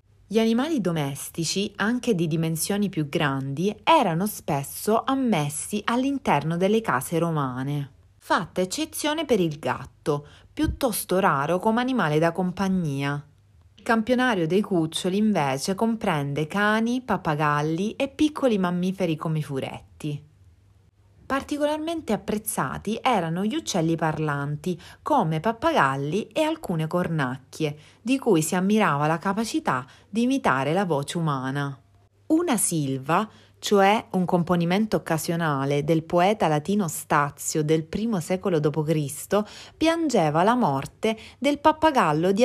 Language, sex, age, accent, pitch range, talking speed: Italian, female, 30-49, native, 150-225 Hz, 115 wpm